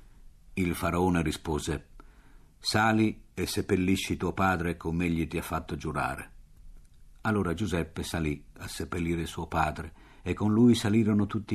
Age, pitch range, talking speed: 60-79, 80-95 Hz, 135 wpm